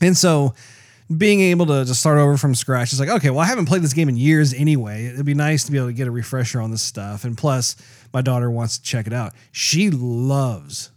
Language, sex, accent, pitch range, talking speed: English, male, American, 125-150 Hz, 250 wpm